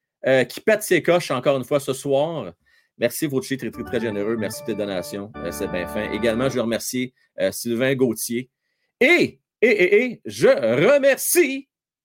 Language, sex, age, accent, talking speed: French, male, 40-59, Canadian, 185 wpm